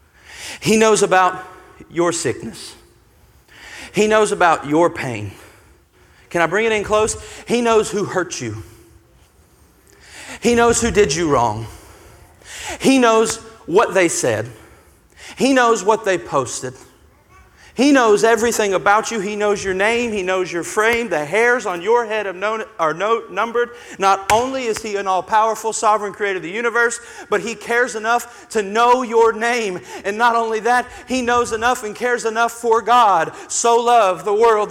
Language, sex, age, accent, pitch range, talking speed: English, male, 40-59, American, 200-245 Hz, 160 wpm